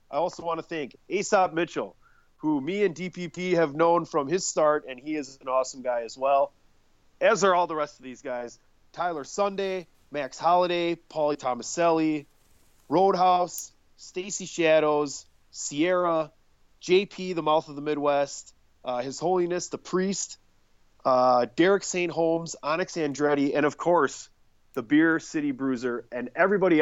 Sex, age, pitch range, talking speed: male, 30-49, 125-165 Hz, 150 wpm